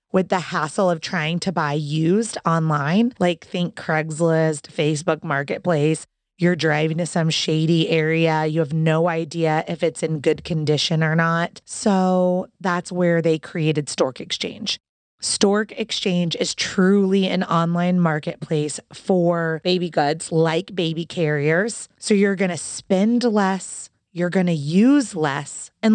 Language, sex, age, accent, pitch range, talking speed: English, female, 30-49, American, 160-205 Hz, 145 wpm